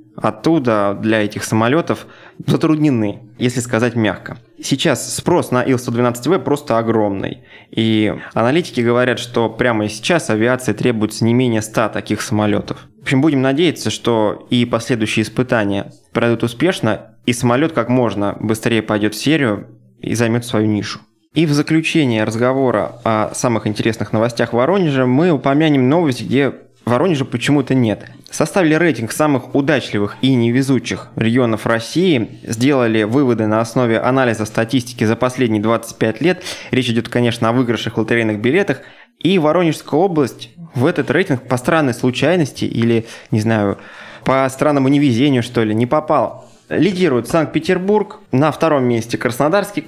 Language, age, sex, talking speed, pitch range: Russian, 20-39, male, 140 wpm, 110-140 Hz